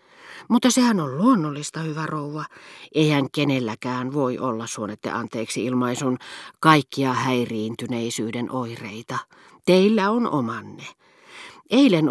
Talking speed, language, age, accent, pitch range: 100 wpm, Finnish, 40-59, native, 125-175 Hz